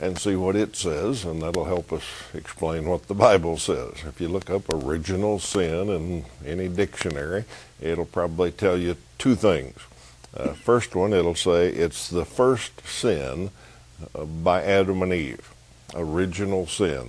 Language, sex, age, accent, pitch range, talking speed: English, male, 60-79, American, 80-100 Hz, 165 wpm